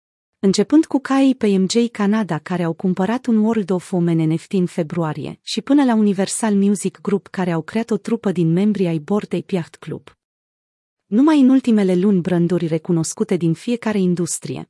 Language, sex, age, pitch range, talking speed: Romanian, female, 30-49, 175-220 Hz, 170 wpm